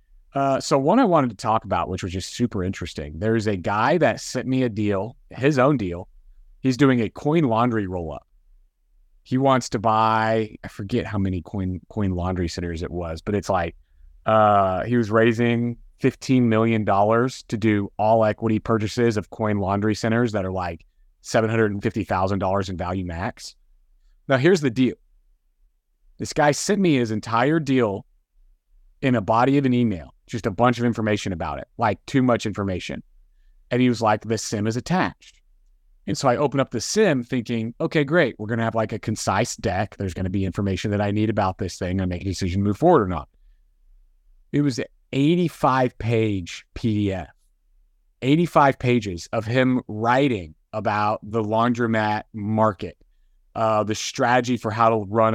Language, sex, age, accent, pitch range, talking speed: English, male, 30-49, American, 95-120 Hz, 180 wpm